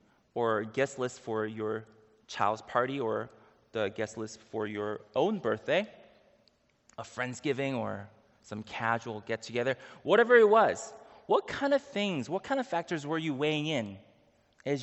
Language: English